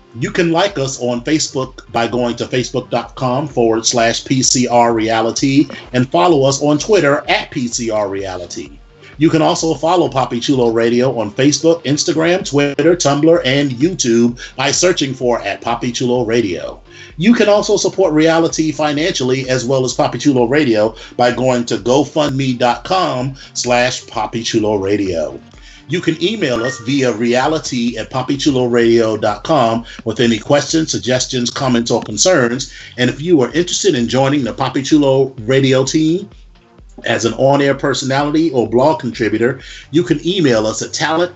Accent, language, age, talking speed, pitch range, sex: American, English, 30-49, 145 wpm, 120-155 Hz, male